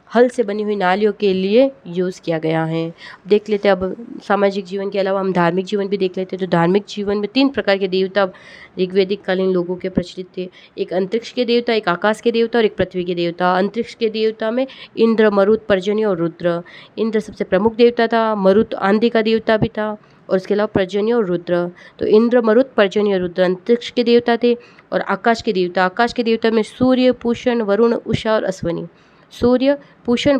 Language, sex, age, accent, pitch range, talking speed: Hindi, female, 20-39, native, 185-230 Hz, 205 wpm